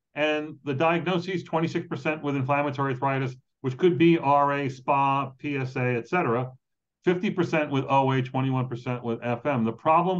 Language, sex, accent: English, male, American